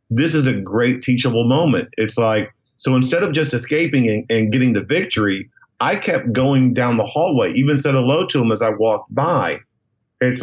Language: English